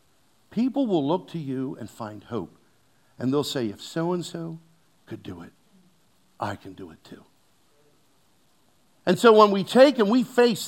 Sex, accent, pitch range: male, American, 150-225 Hz